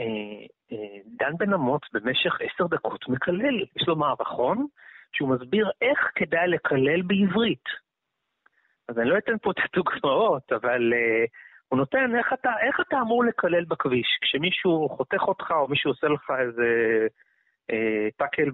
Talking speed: 135 wpm